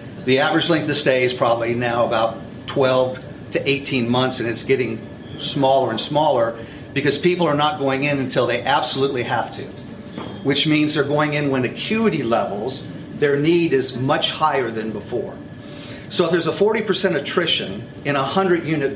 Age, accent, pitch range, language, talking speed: 40-59, American, 120-150 Hz, English, 170 wpm